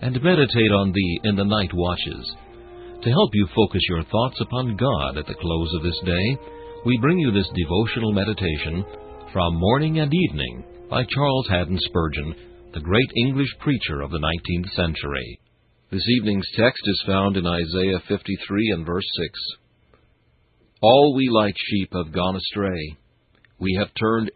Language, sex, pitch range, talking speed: English, male, 90-115 Hz, 160 wpm